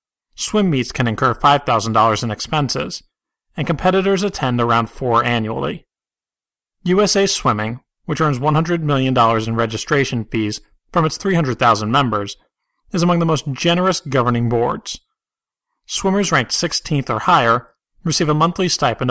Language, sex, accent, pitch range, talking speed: English, male, American, 115-170 Hz, 130 wpm